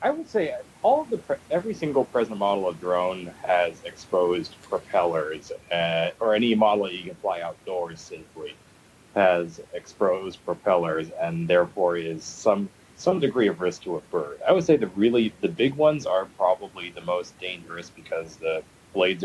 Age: 30-49